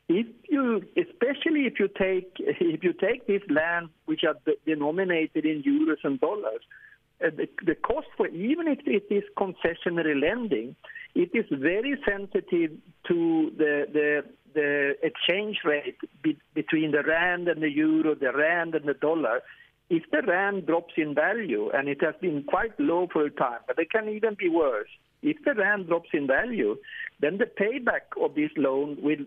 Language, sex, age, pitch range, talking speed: English, male, 60-79, 150-240 Hz, 170 wpm